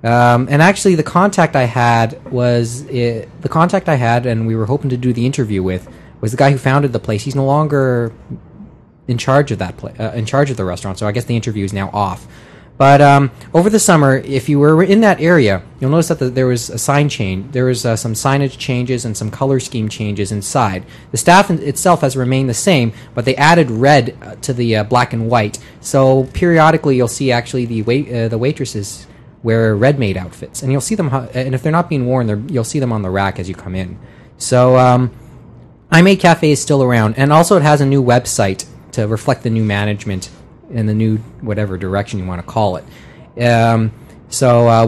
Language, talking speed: English, 225 wpm